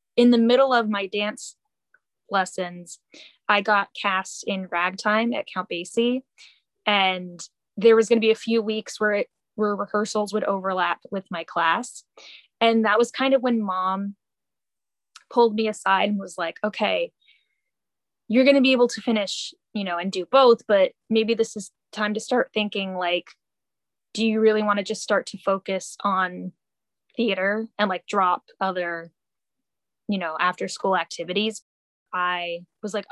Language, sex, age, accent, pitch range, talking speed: English, female, 10-29, American, 185-230 Hz, 165 wpm